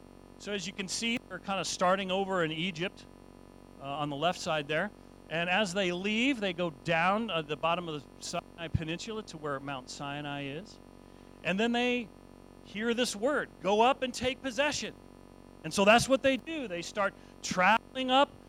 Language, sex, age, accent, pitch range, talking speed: English, male, 40-59, American, 150-200 Hz, 190 wpm